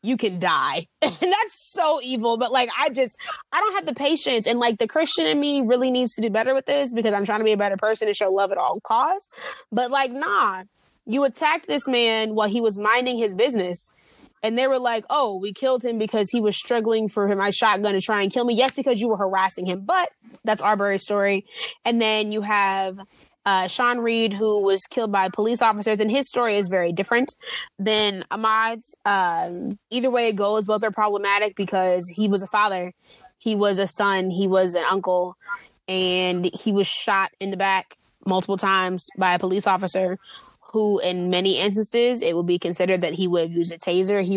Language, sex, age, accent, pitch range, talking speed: English, female, 20-39, American, 190-240 Hz, 215 wpm